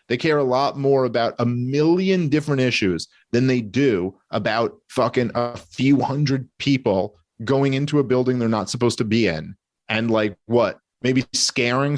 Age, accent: 30-49, American